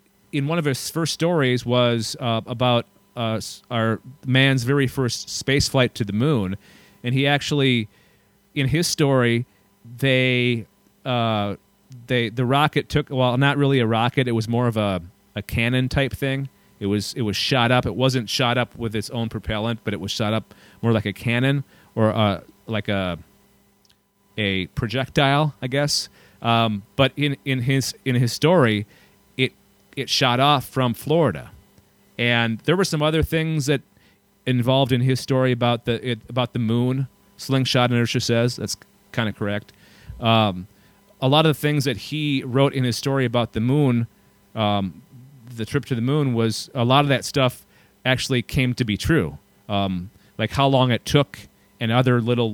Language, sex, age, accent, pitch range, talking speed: English, male, 30-49, American, 110-135 Hz, 175 wpm